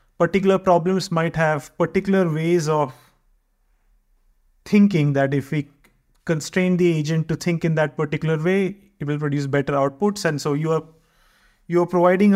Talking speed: 155 wpm